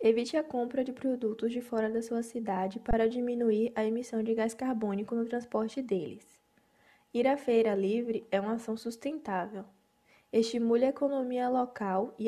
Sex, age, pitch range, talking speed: female, 10-29, 220-245 Hz, 160 wpm